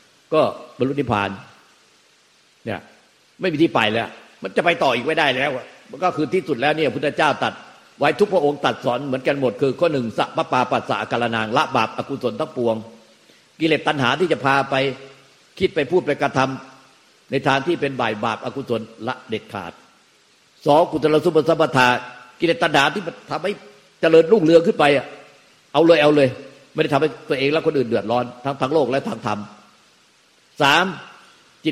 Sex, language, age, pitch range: male, Thai, 50-69, 115-155 Hz